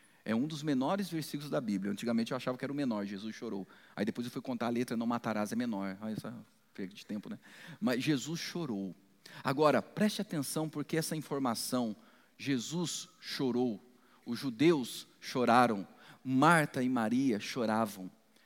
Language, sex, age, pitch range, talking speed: Portuguese, male, 40-59, 125-195 Hz, 165 wpm